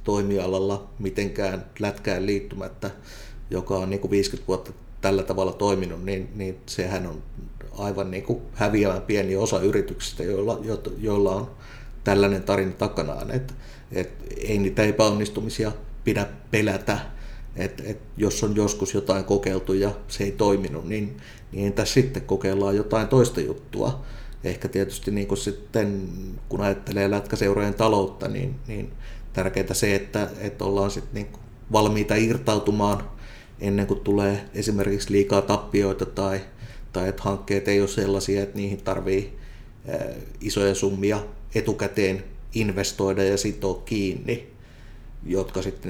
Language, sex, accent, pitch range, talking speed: Finnish, male, native, 95-110 Hz, 120 wpm